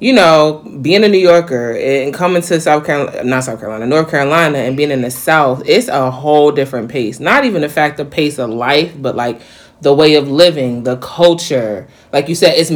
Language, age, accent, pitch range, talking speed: English, 20-39, American, 140-175 Hz, 215 wpm